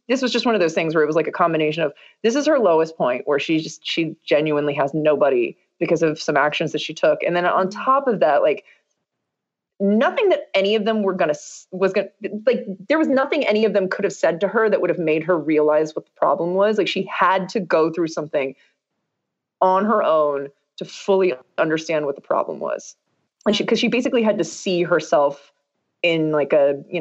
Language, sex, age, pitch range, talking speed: English, female, 20-39, 160-220 Hz, 225 wpm